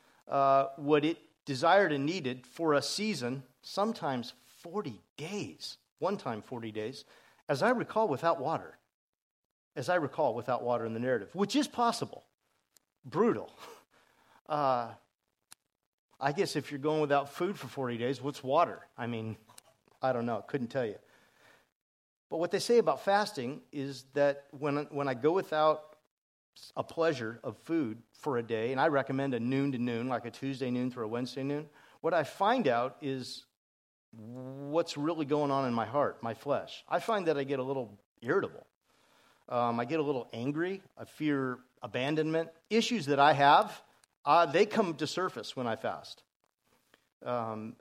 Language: English